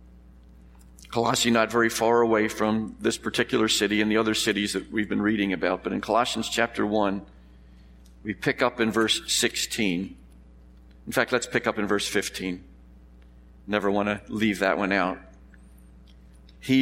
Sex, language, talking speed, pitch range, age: male, English, 160 wpm, 100-135 Hz, 50-69